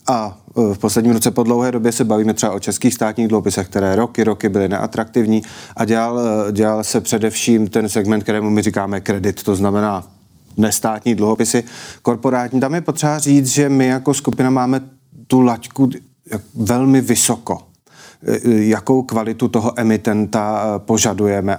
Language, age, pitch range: Czech, 30-49, 105-115 Hz